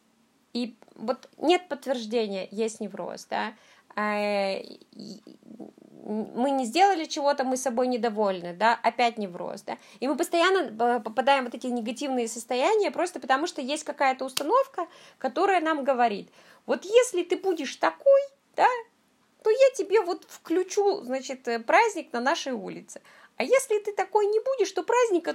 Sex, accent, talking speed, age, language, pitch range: female, native, 145 wpm, 20-39, Russian, 225-325 Hz